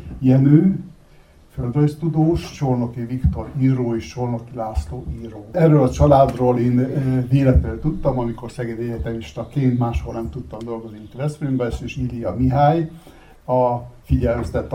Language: Hungarian